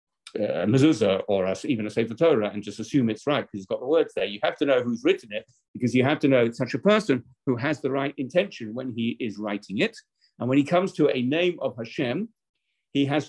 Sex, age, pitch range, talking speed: male, 50-69, 110-140 Hz, 255 wpm